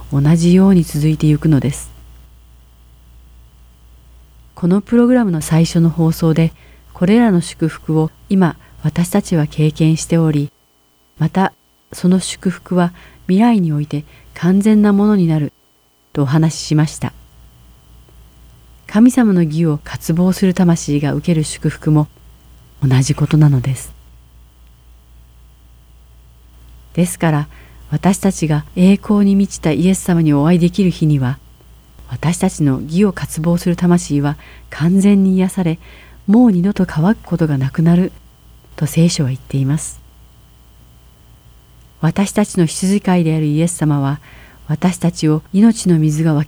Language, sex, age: Japanese, female, 40-59